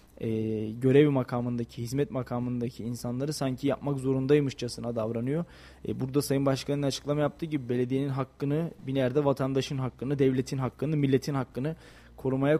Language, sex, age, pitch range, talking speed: Turkish, male, 20-39, 125-145 Hz, 130 wpm